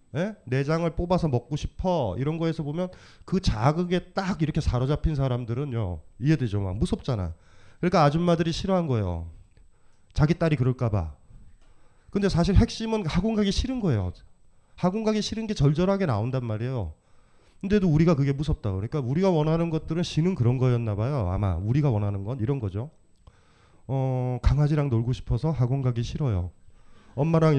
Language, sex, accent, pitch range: Korean, male, native, 110-165 Hz